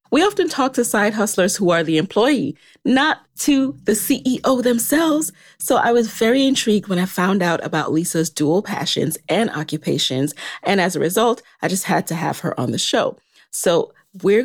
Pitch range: 155-210 Hz